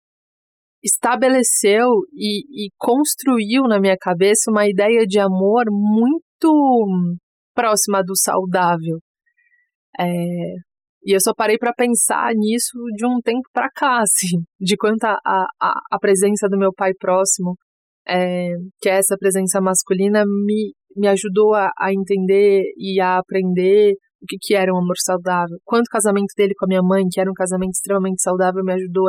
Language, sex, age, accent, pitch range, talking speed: Portuguese, female, 20-39, Brazilian, 185-215 Hz, 155 wpm